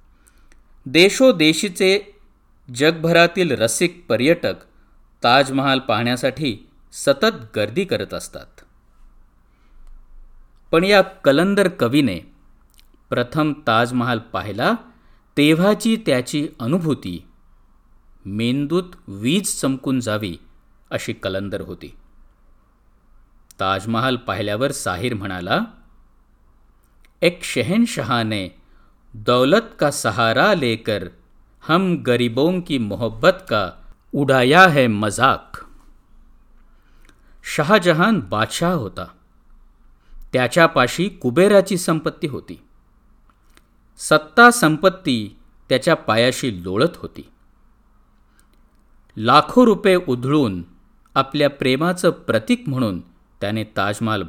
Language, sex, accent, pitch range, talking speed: Marathi, male, native, 115-180 Hz, 75 wpm